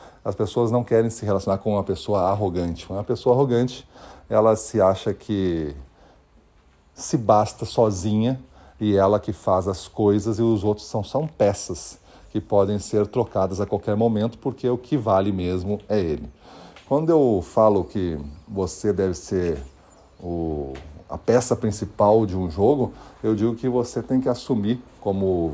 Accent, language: Brazilian, Portuguese